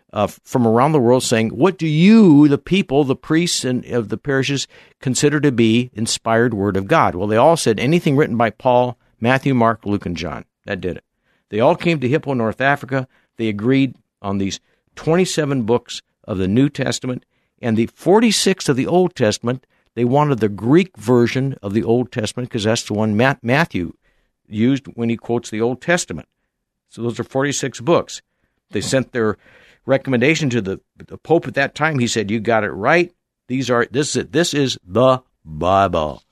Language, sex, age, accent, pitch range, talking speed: English, male, 60-79, American, 115-140 Hz, 195 wpm